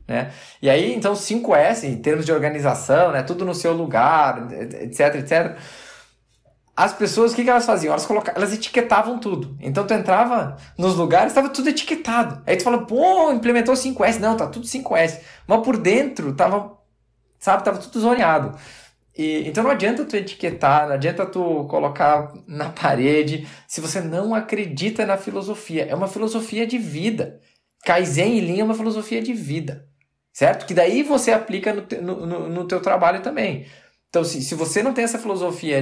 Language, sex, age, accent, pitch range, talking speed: Portuguese, male, 20-39, Brazilian, 150-220 Hz, 175 wpm